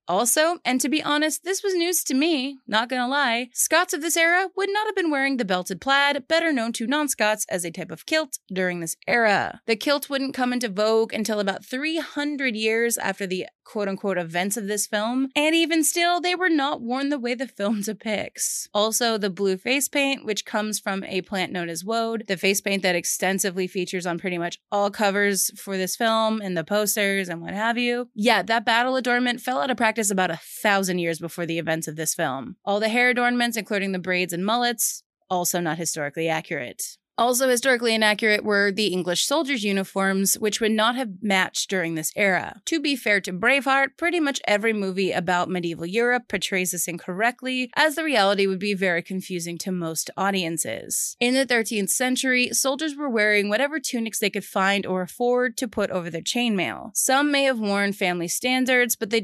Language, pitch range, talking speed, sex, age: English, 190-255 Hz, 200 wpm, female, 30-49